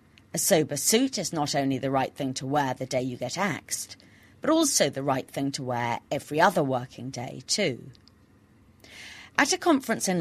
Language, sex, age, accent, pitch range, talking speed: English, female, 40-59, British, 125-180 Hz, 190 wpm